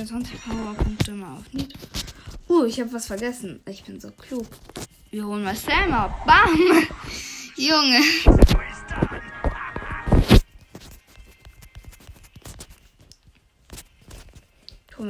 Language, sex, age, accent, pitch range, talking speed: German, female, 20-39, German, 225-270 Hz, 85 wpm